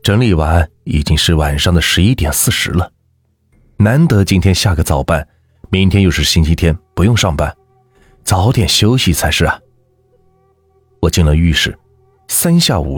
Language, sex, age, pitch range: Chinese, male, 30-49, 80-120 Hz